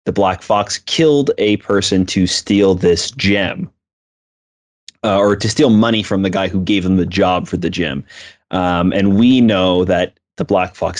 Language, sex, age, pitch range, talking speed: English, male, 30-49, 90-105 Hz, 180 wpm